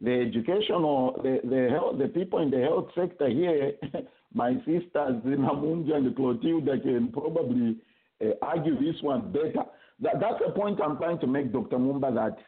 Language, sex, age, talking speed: English, male, 50-69, 175 wpm